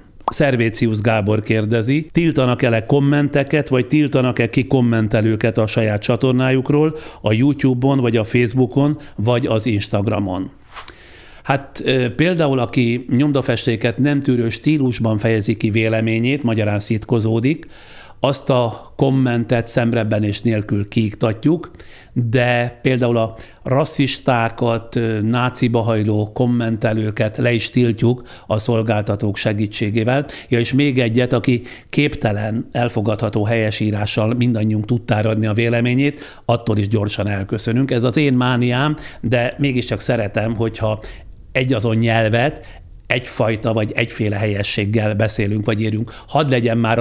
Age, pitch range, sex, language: 60-79, 110-130 Hz, male, Hungarian